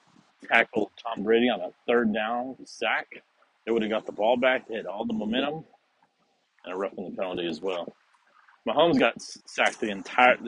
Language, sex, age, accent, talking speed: English, male, 40-59, American, 185 wpm